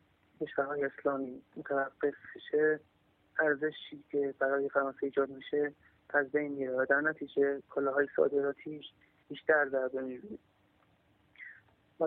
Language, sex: Persian, male